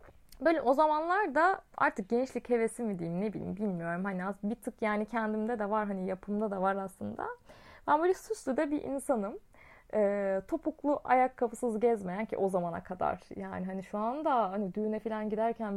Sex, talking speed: female, 180 wpm